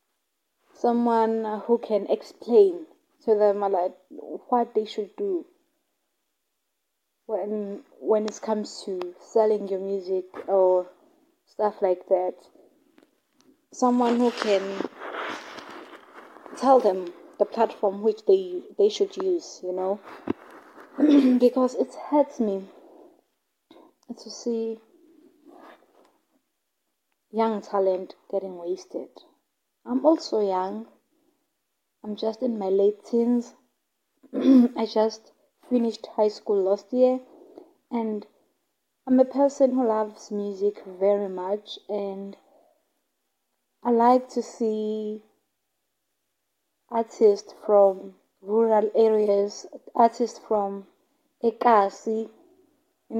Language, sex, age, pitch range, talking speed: English, female, 20-39, 205-300 Hz, 95 wpm